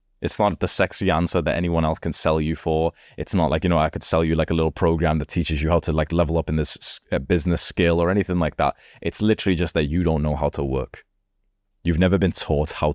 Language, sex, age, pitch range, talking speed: English, male, 20-39, 80-100 Hz, 260 wpm